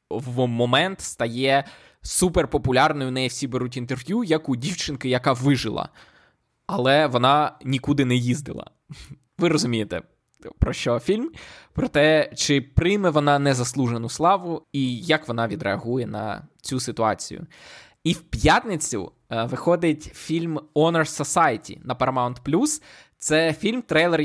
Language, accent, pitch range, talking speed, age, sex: Ukrainian, native, 125-155 Hz, 125 wpm, 20-39, male